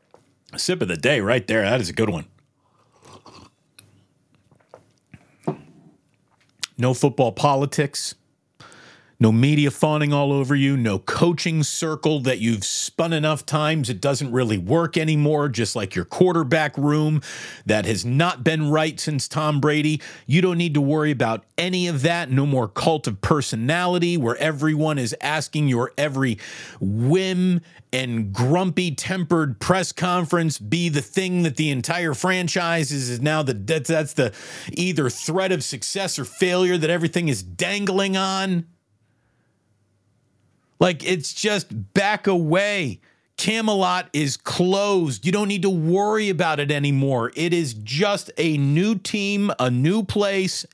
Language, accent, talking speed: English, American, 145 wpm